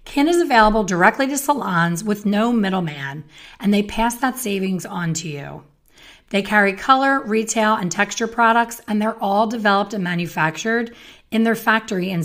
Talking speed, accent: 165 wpm, American